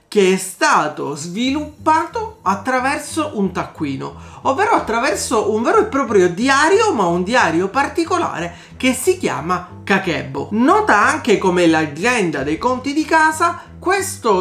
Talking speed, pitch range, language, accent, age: 130 wpm, 195-315 Hz, Italian, native, 40-59